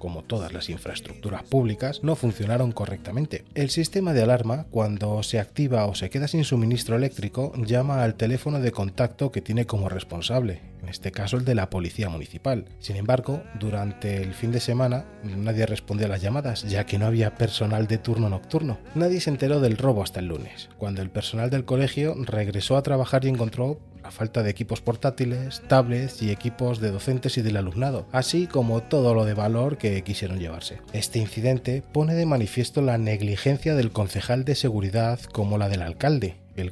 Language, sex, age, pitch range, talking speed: English, male, 30-49, 105-135 Hz, 185 wpm